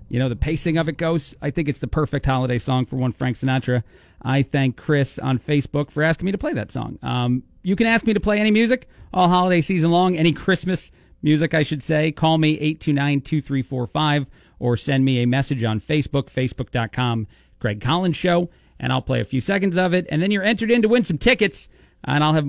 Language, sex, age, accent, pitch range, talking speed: English, male, 40-59, American, 125-160 Hz, 225 wpm